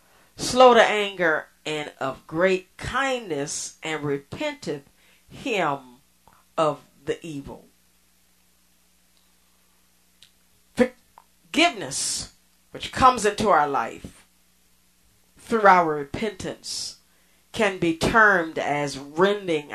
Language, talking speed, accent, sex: English, 80 wpm, American, female